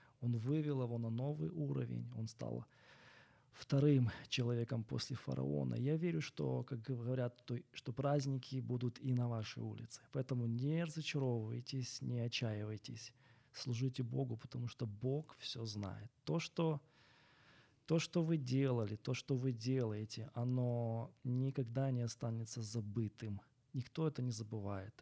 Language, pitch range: Ukrainian, 115-130 Hz